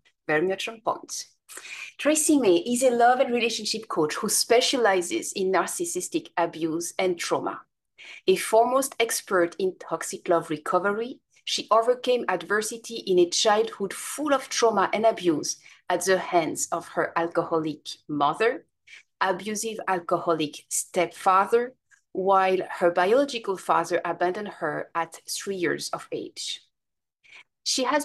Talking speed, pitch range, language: 120 wpm, 175-245 Hz, English